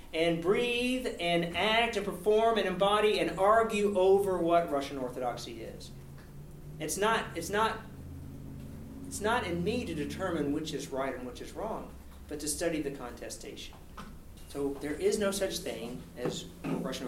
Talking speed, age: 160 wpm, 40-59